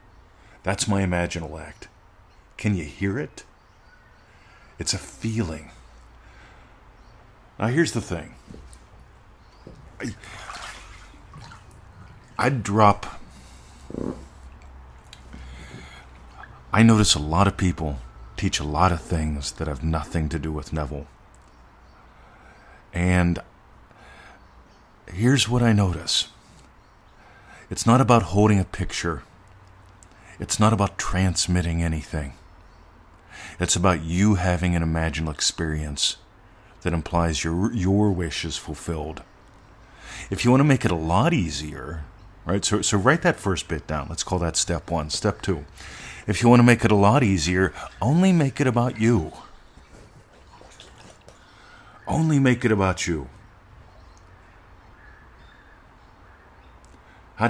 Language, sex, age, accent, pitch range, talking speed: English, male, 40-59, American, 80-105 Hz, 115 wpm